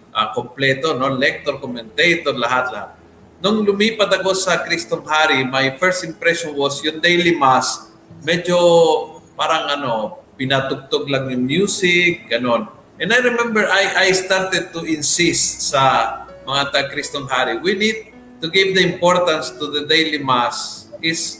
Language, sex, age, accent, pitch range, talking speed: Filipino, male, 50-69, native, 145-185 Hz, 150 wpm